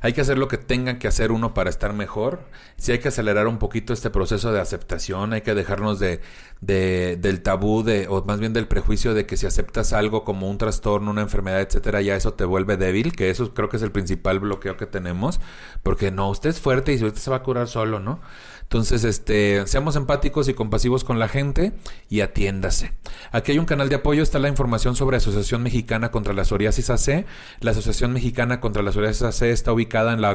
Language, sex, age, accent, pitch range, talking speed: Spanish, male, 40-59, Mexican, 100-120 Hz, 225 wpm